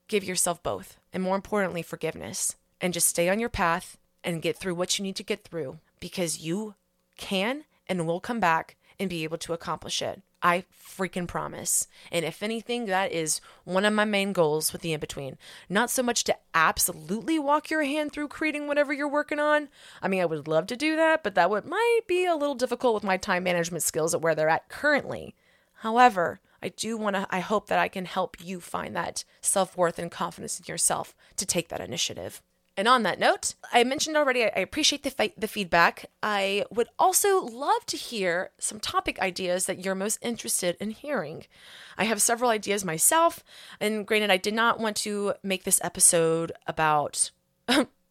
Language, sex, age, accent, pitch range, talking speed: English, female, 20-39, American, 175-240 Hz, 195 wpm